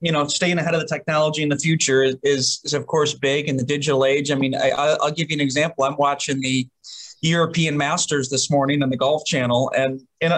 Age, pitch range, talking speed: 30-49, 135-165 Hz, 230 wpm